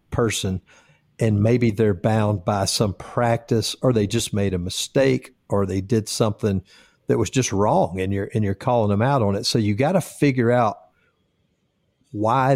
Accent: American